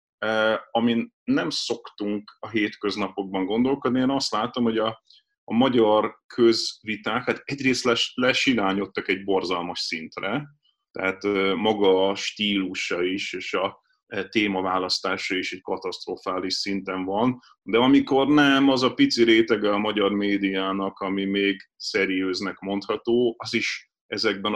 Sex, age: male, 30-49